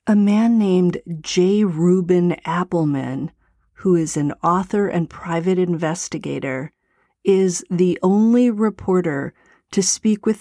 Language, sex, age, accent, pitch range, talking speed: English, female, 40-59, American, 165-195 Hz, 115 wpm